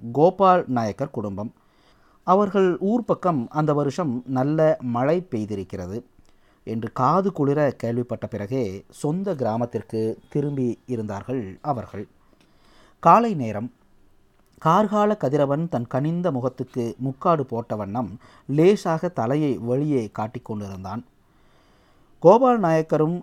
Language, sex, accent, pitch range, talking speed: Tamil, male, native, 120-170 Hz, 90 wpm